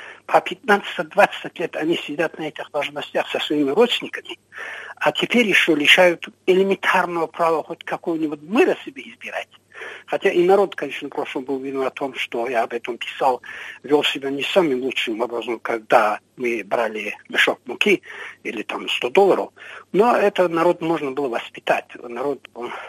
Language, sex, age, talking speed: Russian, male, 60-79, 155 wpm